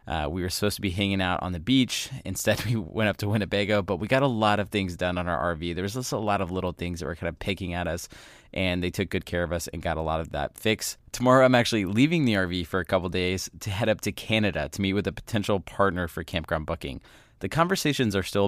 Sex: male